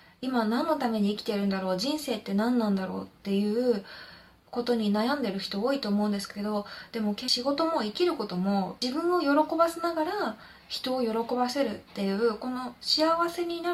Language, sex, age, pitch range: Japanese, female, 20-39, 210-300 Hz